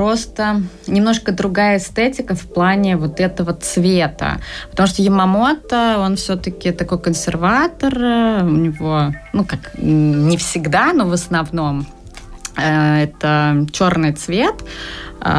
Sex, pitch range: female, 155-205 Hz